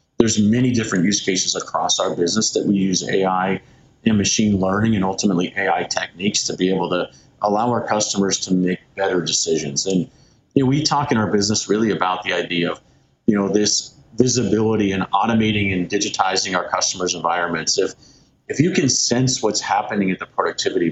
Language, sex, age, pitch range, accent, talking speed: English, male, 40-59, 95-120 Hz, American, 185 wpm